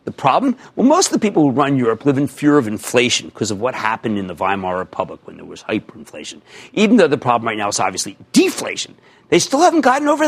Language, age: English, 50-69